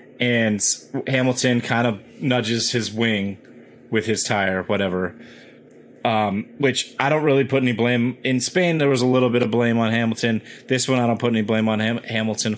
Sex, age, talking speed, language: male, 30-49, 190 wpm, English